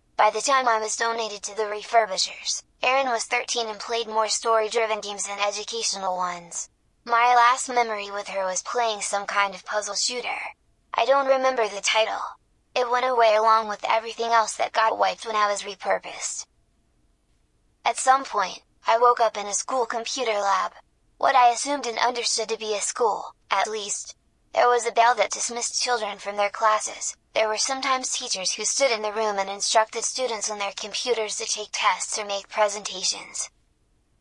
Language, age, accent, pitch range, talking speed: English, 10-29, American, 205-240 Hz, 180 wpm